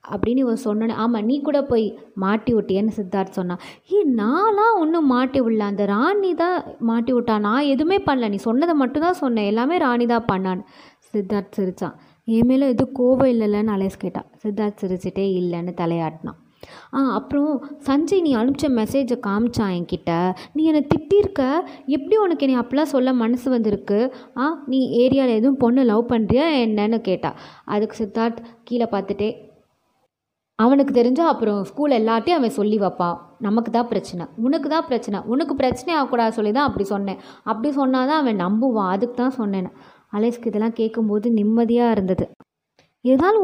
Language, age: Tamil, 20-39